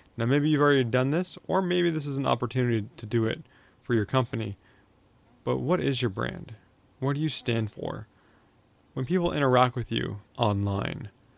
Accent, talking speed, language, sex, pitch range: American, 180 wpm, English, male, 105-135 Hz